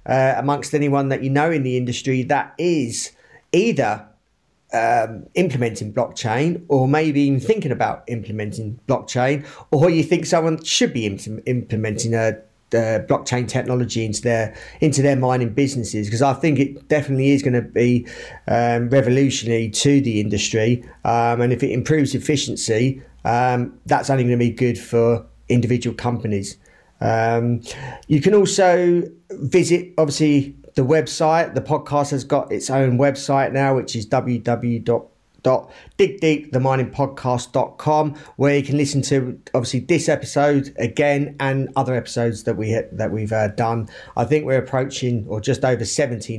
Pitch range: 115-145 Hz